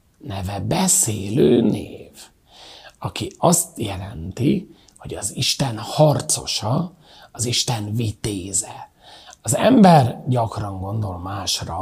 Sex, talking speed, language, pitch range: male, 90 wpm, Hungarian, 100-145 Hz